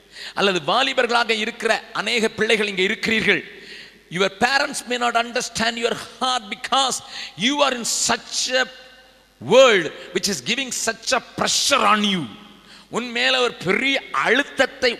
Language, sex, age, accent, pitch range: Tamil, male, 50-69, native, 190-240 Hz